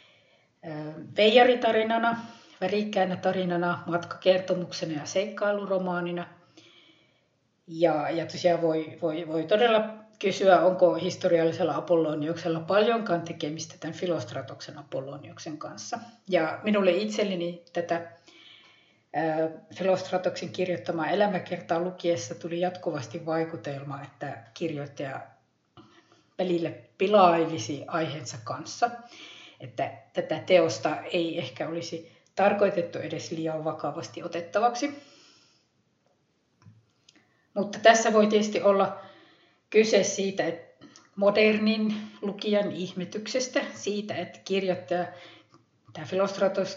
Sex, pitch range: female, 165-195 Hz